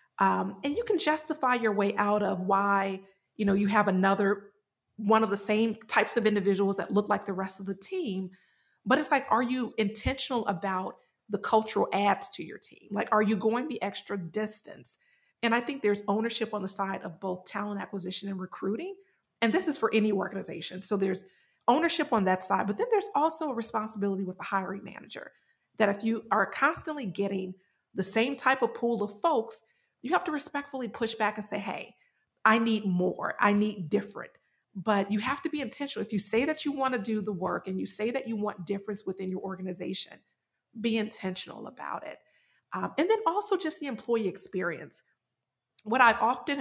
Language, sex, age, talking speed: English, female, 40-59, 200 wpm